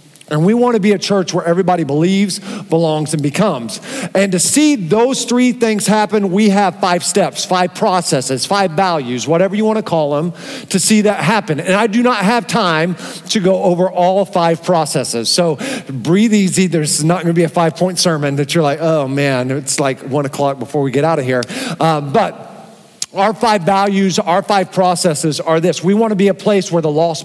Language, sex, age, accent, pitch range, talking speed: English, male, 40-59, American, 165-210 Hz, 210 wpm